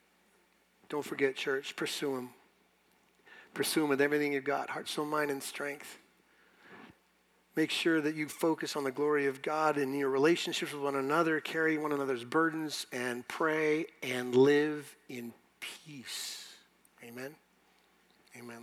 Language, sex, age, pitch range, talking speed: English, male, 50-69, 125-155 Hz, 140 wpm